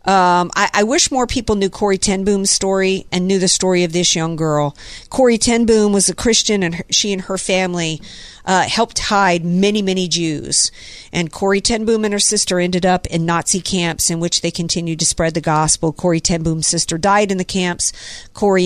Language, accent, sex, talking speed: English, American, female, 210 wpm